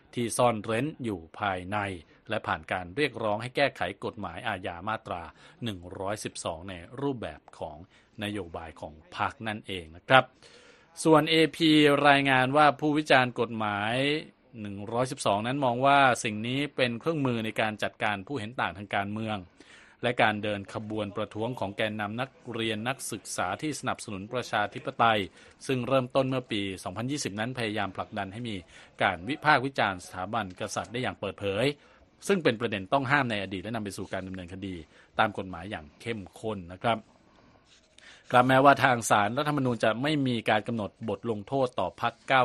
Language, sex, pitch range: Thai, male, 100-130 Hz